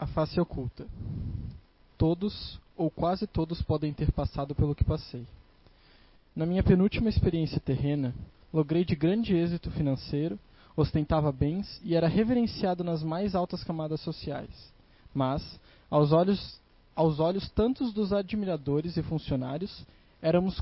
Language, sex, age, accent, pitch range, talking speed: Portuguese, male, 20-39, Brazilian, 150-195 Hz, 125 wpm